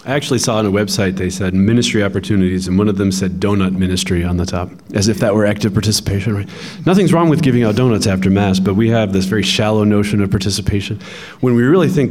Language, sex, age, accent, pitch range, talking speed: English, male, 30-49, American, 100-130 Hz, 240 wpm